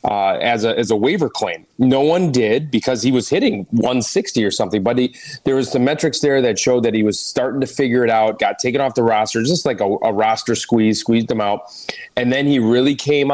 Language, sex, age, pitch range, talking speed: English, male, 30-49, 110-140 Hz, 240 wpm